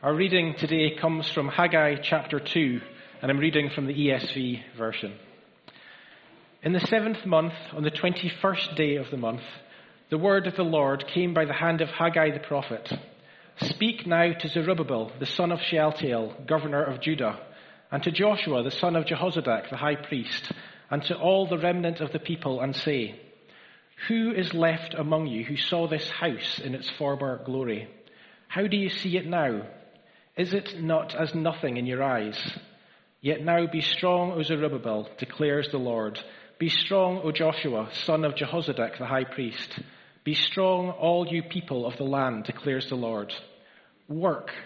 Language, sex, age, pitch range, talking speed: English, male, 40-59, 135-175 Hz, 170 wpm